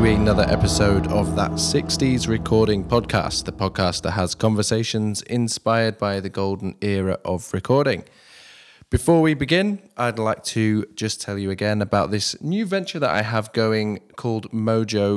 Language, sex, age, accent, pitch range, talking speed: English, male, 20-39, British, 105-130 Hz, 155 wpm